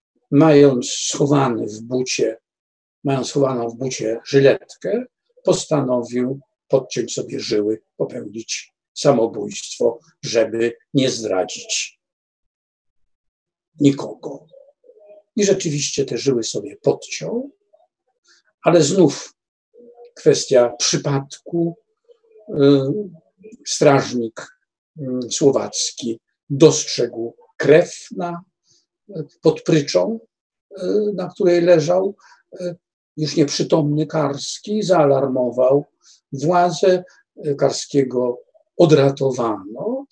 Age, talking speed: 50-69, 70 wpm